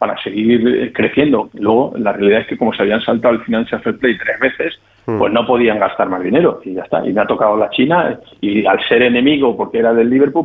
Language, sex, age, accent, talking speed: Spanish, male, 50-69, Spanish, 235 wpm